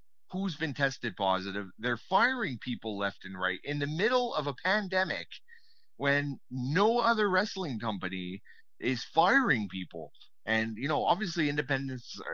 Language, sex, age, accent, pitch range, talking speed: English, male, 30-49, American, 110-160 Hz, 140 wpm